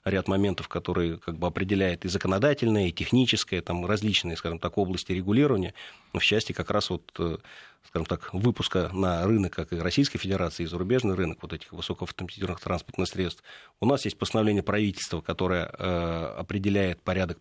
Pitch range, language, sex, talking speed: 90-105 Hz, Russian, male, 160 wpm